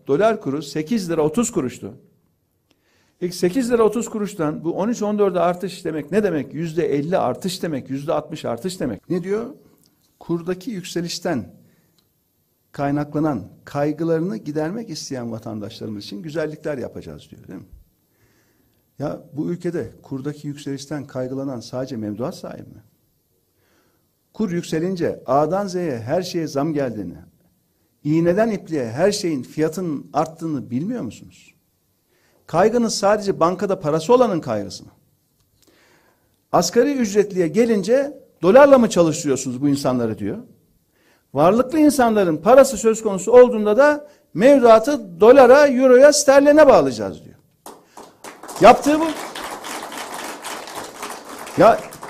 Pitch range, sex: 140-215 Hz, male